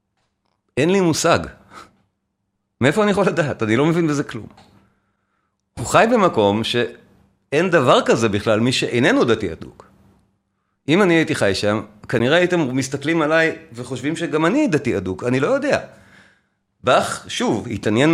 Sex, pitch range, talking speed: male, 110-160 Hz, 140 wpm